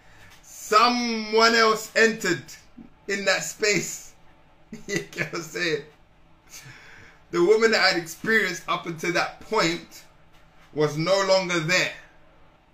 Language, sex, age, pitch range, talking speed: English, male, 20-39, 140-165 Hz, 115 wpm